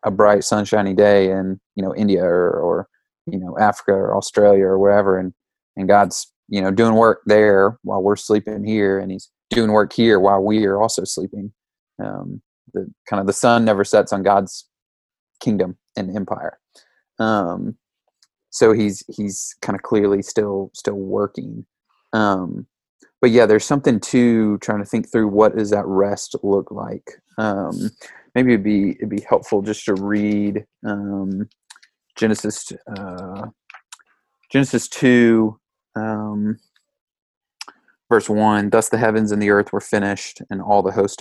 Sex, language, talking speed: male, English, 155 wpm